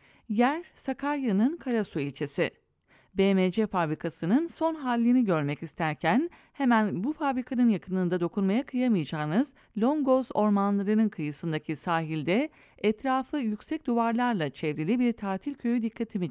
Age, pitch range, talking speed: 40-59, 175-245 Hz, 105 wpm